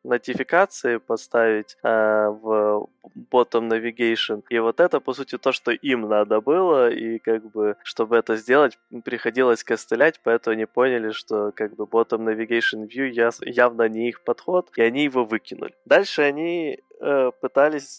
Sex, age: male, 20-39